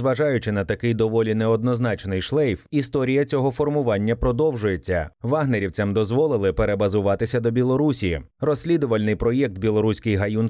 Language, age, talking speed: Ukrainian, 30-49, 110 wpm